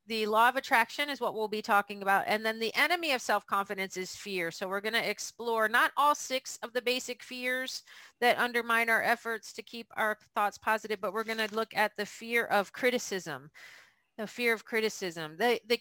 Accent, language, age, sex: American, English, 40-59, female